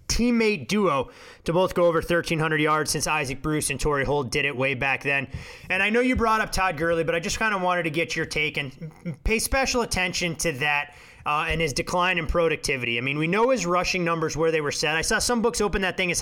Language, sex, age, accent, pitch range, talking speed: English, male, 20-39, American, 155-195 Hz, 250 wpm